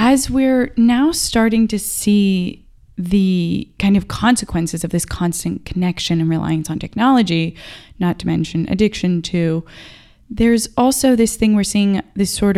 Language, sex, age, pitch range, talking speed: English, female, 20-39, 175-225 Hz, 150 wpm